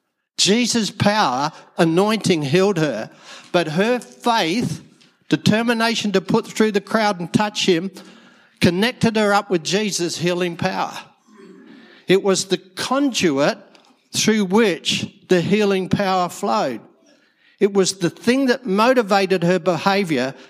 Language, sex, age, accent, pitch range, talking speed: English, male, 60-79, Australian, 145-195 Hz, 125 wpm